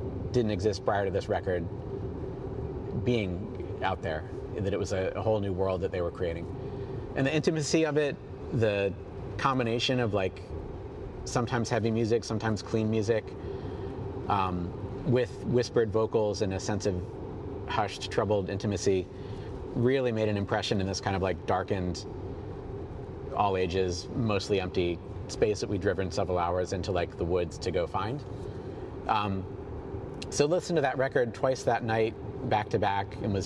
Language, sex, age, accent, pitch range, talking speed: English, male, 40-59, American, 95-125 Hz, 160 wpm